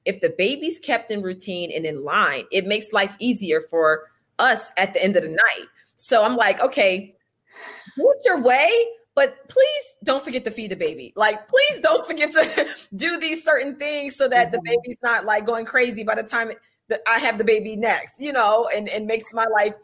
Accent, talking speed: American, 210 wpm